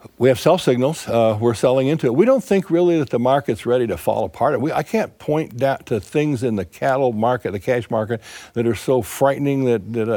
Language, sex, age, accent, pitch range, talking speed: English, male, 60-79, American, 105-130 Hz, 235 wpm